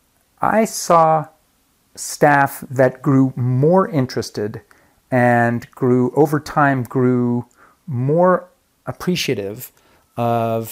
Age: 40-59